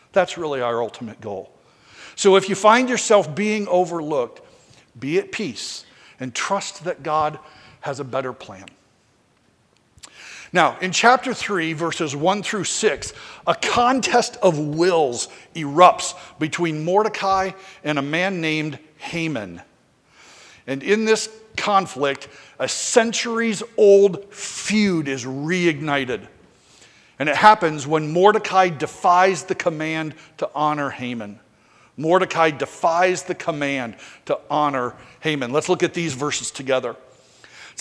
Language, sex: English, male